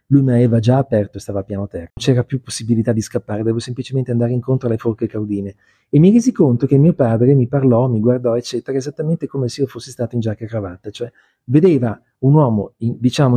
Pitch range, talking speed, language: 115-145 Hz, 230 wpm, Italian